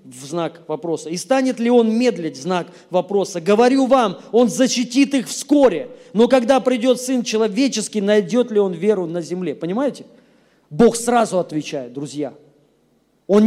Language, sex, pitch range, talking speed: Russian, male, 180-260 Hz, 150 wpm